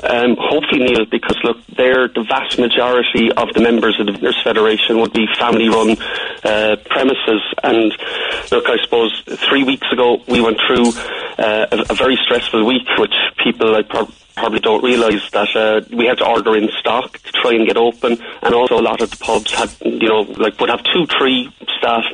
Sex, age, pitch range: male, 30-49, 110-130 Hz